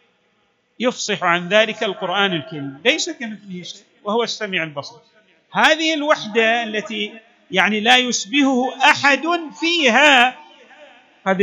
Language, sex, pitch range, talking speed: Arabic, male, 195-260 Hz, 105 wpm